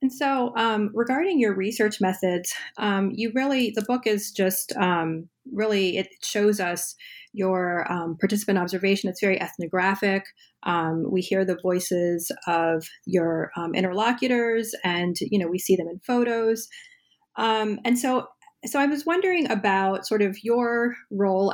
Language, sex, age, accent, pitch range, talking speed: English, female, 30-49, American, 185-235 Hz, 150 wpm